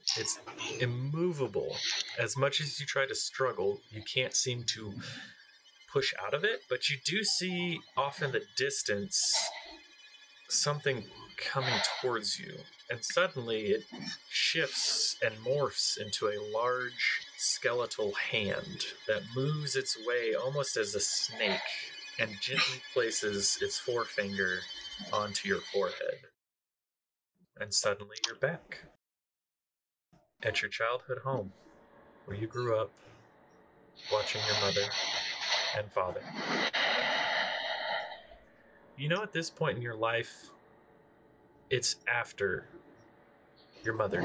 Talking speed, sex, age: 115 wpm, male, 30-49